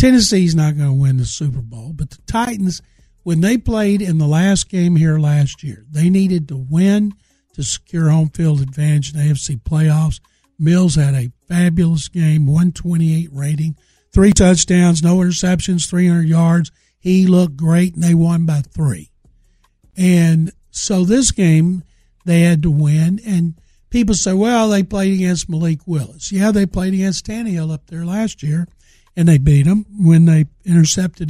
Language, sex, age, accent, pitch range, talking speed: English, male, 60-79, American, 155-185 Hz, 170 wpm